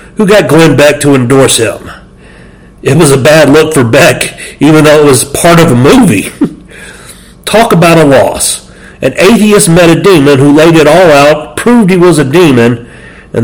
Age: 50-69